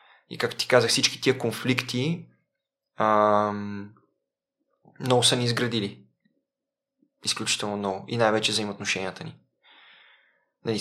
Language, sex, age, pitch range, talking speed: Bulgarian, male, 20-39, 110-125 Hz, 105 wpm